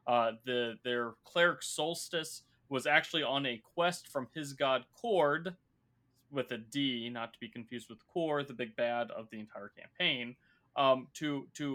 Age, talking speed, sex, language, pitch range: 30-49, 170 wpm, male, English, 120-150 Hz